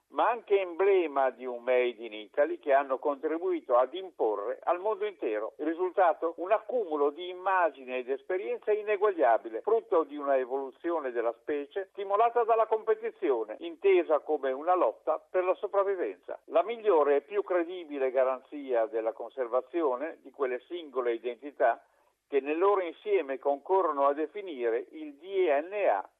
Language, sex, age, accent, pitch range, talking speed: Italian, male, 50-69, native, 135-210 Hz, 140 wpm